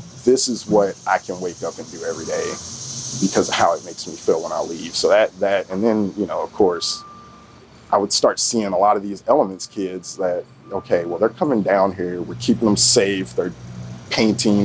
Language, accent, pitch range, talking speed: English, American, 95-115 Hz, 215 wpm